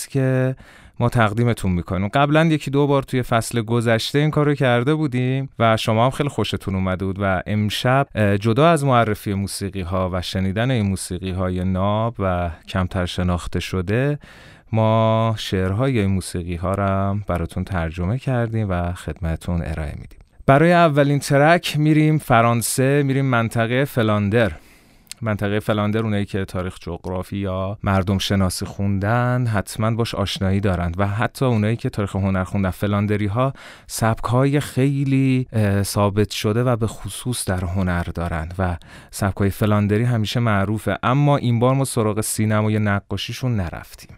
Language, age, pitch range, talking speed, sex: Persian, 30-49, 95-125 Hz, 145 wpm, male